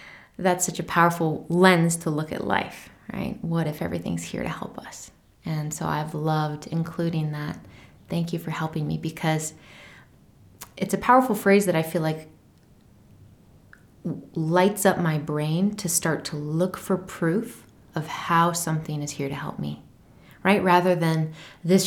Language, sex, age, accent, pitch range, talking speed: English, female, 20-39, American, 155-185 Hz, 160 wpm